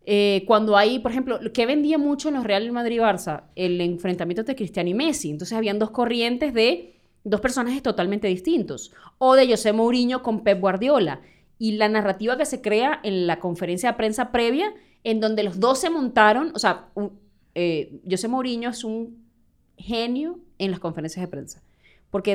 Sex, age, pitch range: female, 20-39, 190-235 Hz